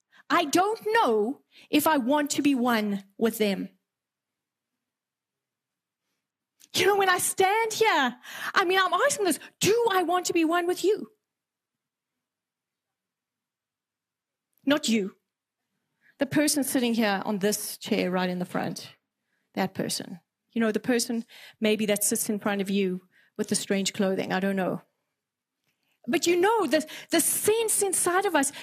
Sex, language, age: female, English, 30-49